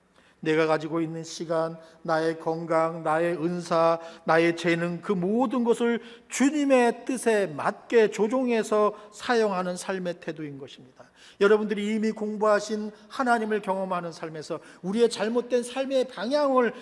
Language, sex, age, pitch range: Korean, male, 50-69, 170-235 Hz